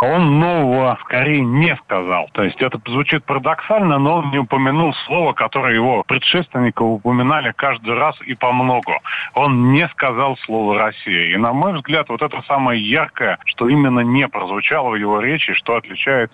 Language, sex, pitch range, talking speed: Russian, male, 120-150 Hz, 165 wpm